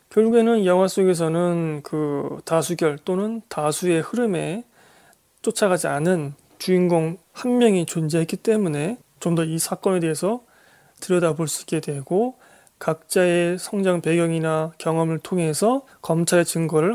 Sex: male